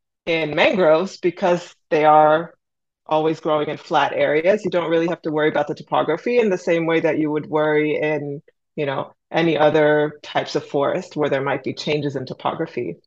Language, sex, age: English, female, 20-39